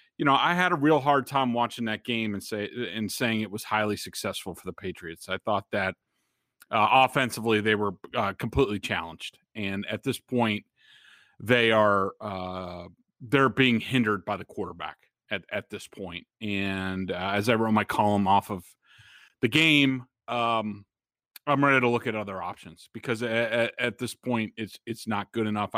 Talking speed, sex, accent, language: 180 wpm, male, American, English